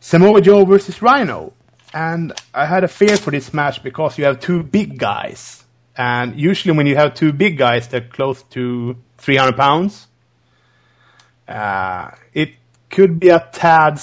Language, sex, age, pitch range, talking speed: English, male, 30-49, 125-165 Hz, 165 wpm